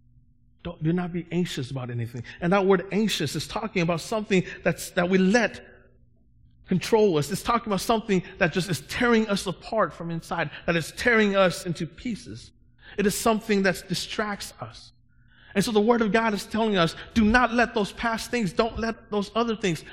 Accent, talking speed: American, 195 wpm